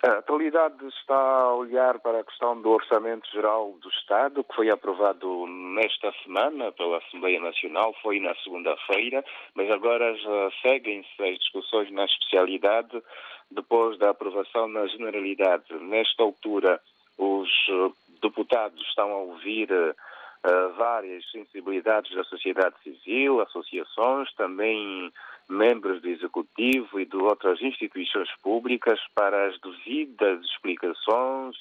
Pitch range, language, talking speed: 95-120 Hz, Portuguese, 120 wpm